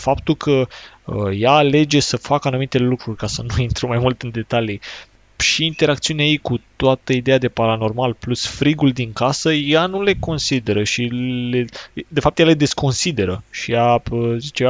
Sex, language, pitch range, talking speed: male, Romanian, 110-135 Hz, 180 wpm